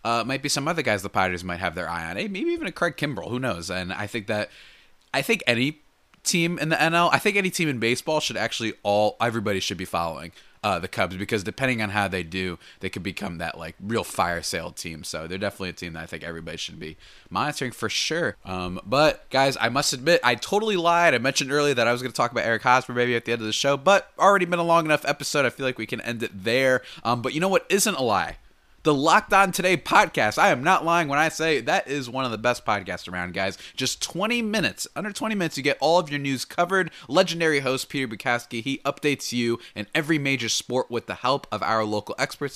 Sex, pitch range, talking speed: male, 110-155 Hz, 250 wpm